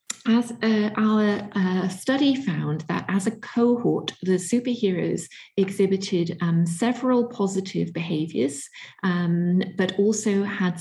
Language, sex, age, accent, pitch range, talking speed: English, female, 40-59, British, 170-205 Hz, 115 wpm